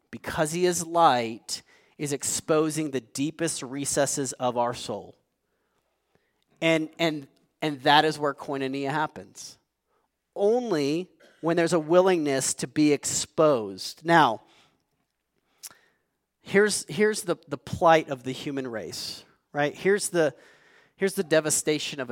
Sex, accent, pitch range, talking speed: male, American, 135-165 Hz, 120 wpm